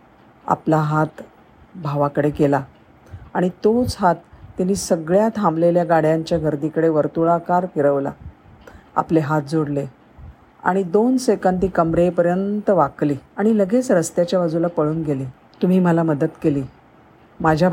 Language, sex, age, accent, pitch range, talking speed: Marathi, female, 50-69, native, 155-190 Hz, 105 wpm